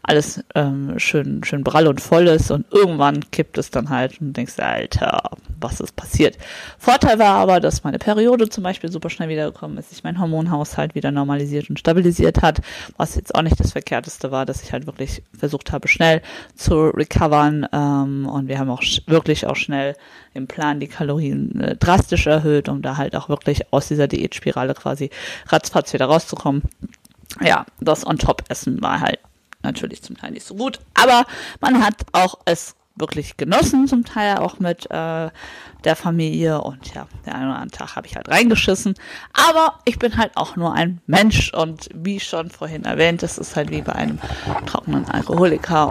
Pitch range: 145-190 Hz